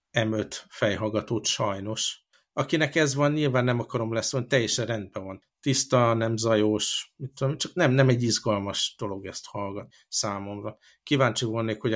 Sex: male